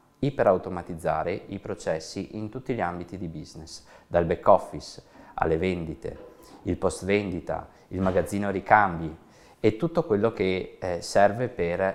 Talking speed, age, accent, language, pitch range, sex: 130 wpm, 20-39, native, Italian, 85-105 Hz, male